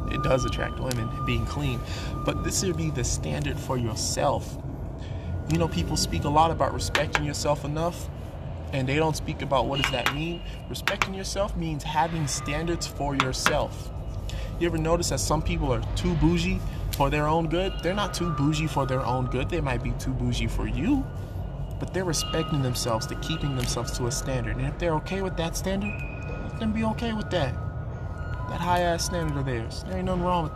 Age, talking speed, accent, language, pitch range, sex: 20-39, 200 wpm, American, English, 120-155 Hz, male